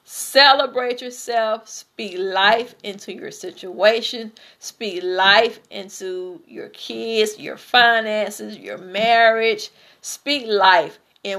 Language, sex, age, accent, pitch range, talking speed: English, female, 50-69, American, 205-255 Hz, 100 wpm